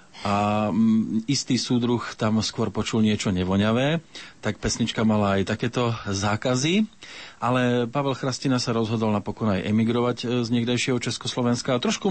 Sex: male